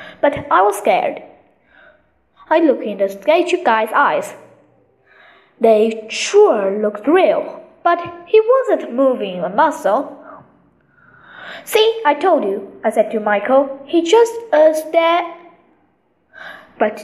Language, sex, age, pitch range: Chinese, female, 20-39, 230-335 Hz